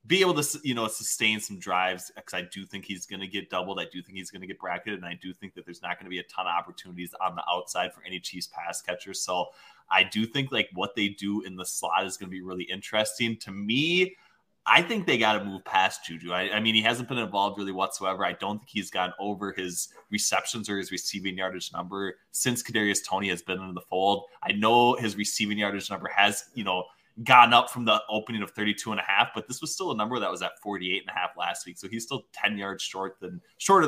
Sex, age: male, 20-39